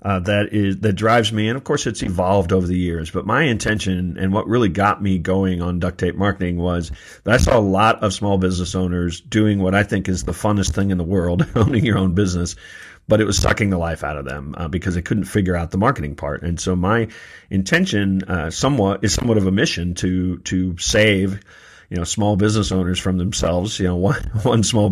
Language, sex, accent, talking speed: English, male, American, 235 wpm